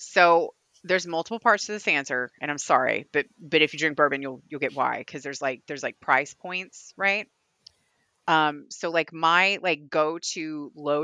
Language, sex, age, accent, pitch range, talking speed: English, female, 30-49, American, 140-185 Hz, 195 wpm